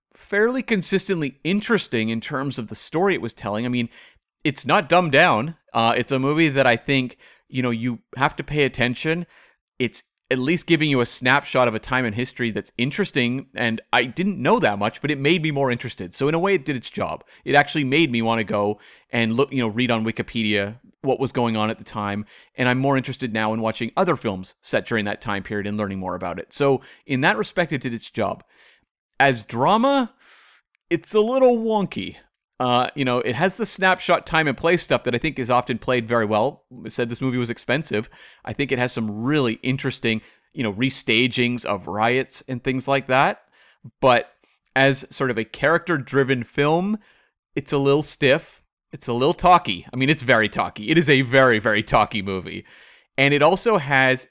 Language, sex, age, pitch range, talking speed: English, male, 30-49, 115-150 Hz, 210 wpm